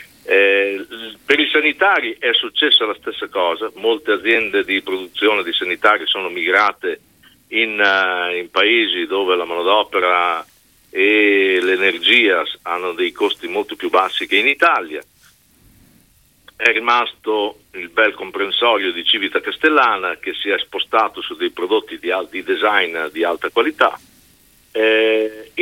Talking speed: 130 wpm